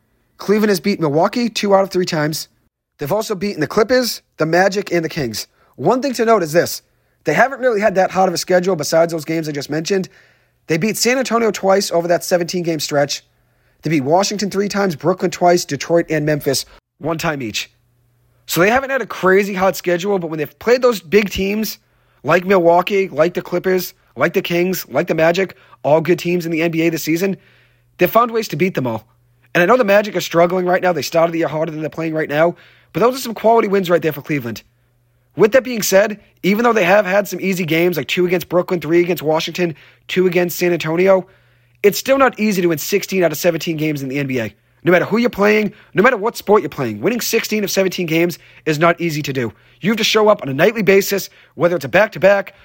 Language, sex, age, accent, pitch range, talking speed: English, male, 30-49, American, 160-200 Hz, 230 wpm